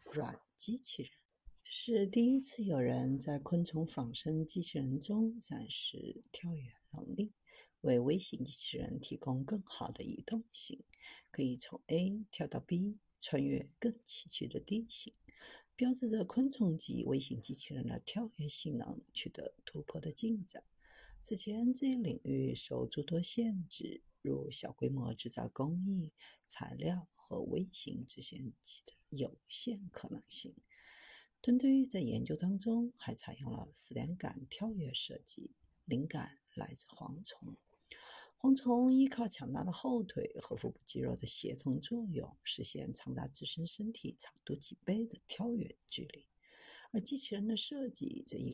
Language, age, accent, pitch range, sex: Chinese, 50-69, native, 150-230 Hz, female